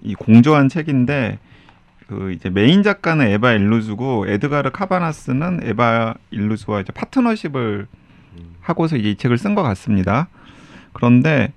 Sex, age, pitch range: male, 30-49, 105-150 Hz